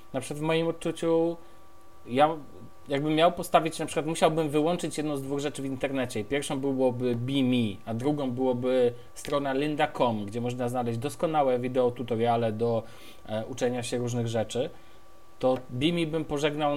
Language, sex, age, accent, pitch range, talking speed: Polish, male, 20-39, native, 125-165 Hz, 155 wpm